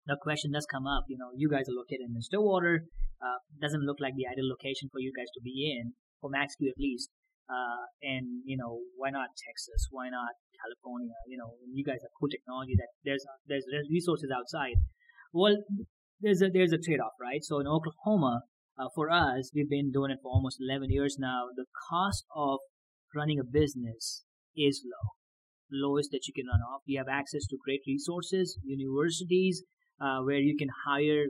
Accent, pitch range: Indian, 130-155 Hz